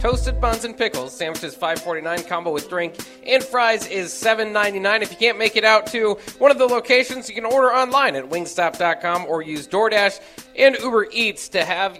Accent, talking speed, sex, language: American, 200 wpm, male, English